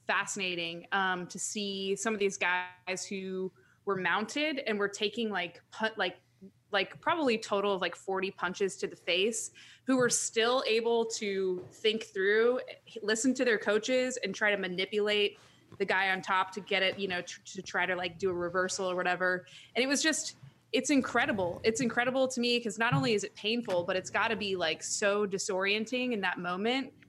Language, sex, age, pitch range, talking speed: English, female, 20-39, 185-225 Hz, 195 wpm